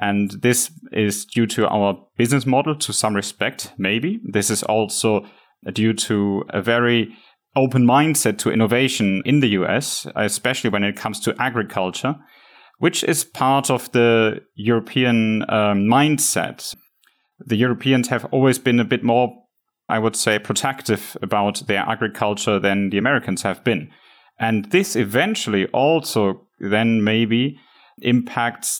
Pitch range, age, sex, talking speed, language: 105-125 Hz, 30-49, male, 140 wpm, English